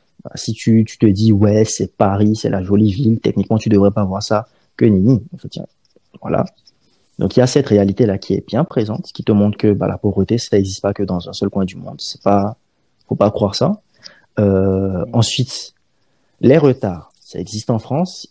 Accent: French